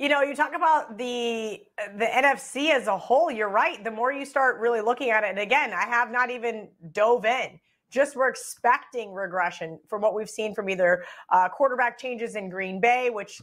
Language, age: English, 30-49